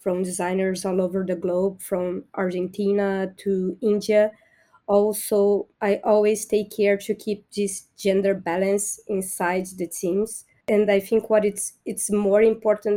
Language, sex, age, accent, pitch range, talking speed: English, female, 20-39, Brazilian, 195-220 Hz, 145 wpm